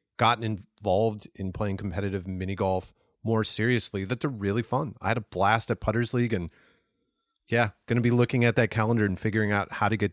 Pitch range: 100-120 Hz